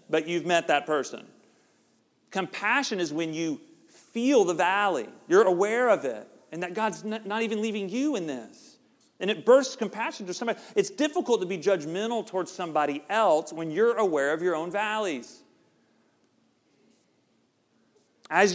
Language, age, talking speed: English, 40-59, 150 wpm